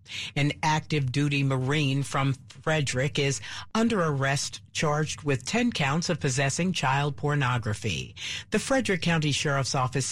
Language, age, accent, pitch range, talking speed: English, 50-69, American, 135-175 Hz, 125 wpm